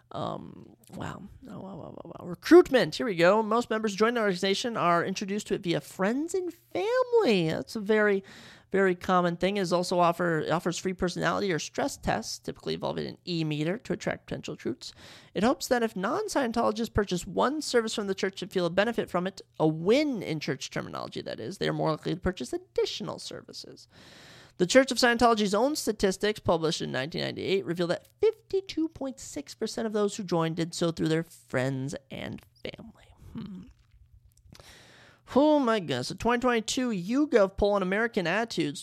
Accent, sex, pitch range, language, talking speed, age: American, male, 175-245 Hz, English, 175 wpm, 30-49